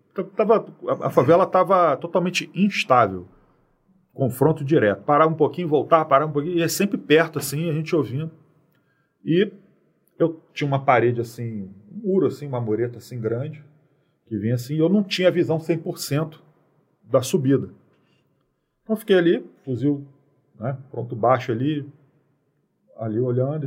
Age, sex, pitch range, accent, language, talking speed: 40-59, male, 125-155 Hz, Brazilian, Portuguese, 145 wpm